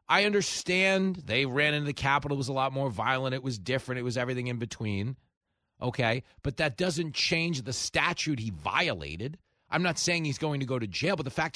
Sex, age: male, 40-59